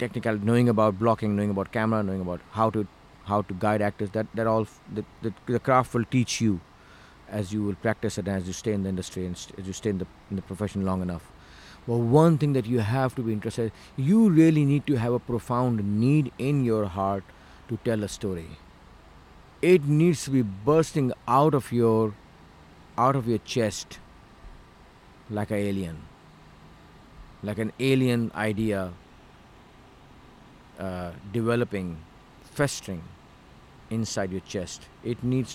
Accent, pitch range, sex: native, 95-125 Hz, male